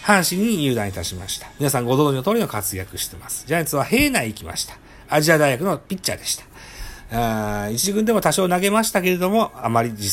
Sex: male